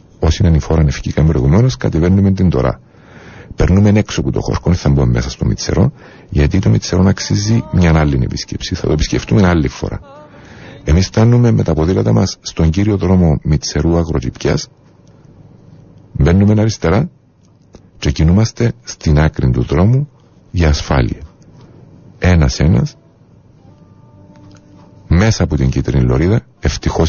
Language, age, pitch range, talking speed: Greek, 50-69, 75-110 Hz, 125 wpm